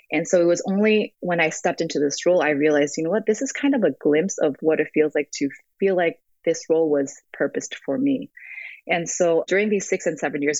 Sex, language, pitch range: female, English, 145-180 Hz